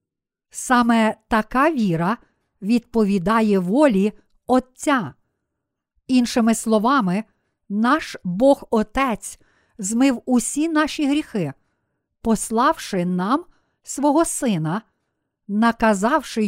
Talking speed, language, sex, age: 70 wpm, Ukrainian, female, 50-69